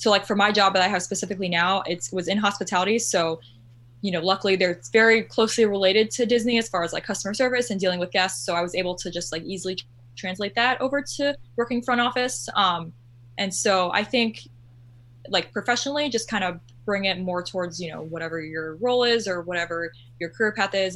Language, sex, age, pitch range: English, female, 10-29, 165-205 Hz